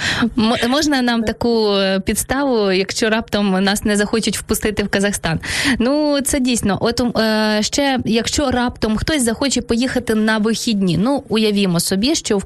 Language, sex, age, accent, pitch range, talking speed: Ukrainian, female, 20-39, native, 200-245 Hz, 150 wpm